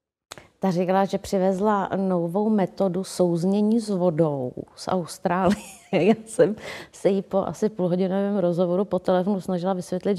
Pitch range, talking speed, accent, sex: 185-270 Hz, 135 wpm, native, female